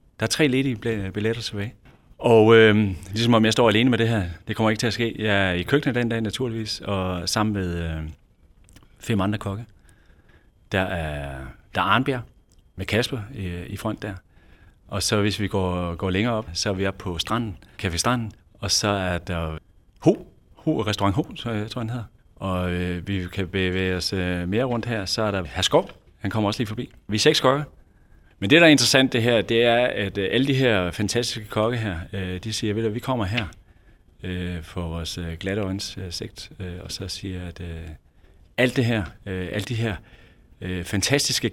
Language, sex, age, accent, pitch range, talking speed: Danish, male, 30-49, native, 90-115 Hz, 195 wpm